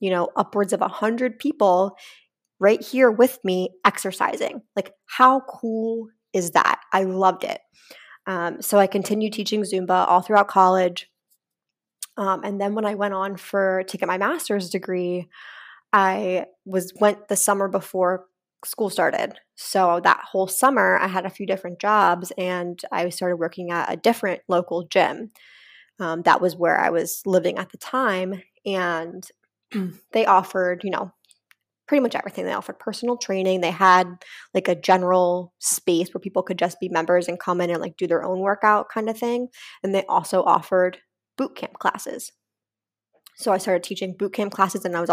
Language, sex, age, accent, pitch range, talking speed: English, female, 20-39, American, 180-205 Hz, 175 wpm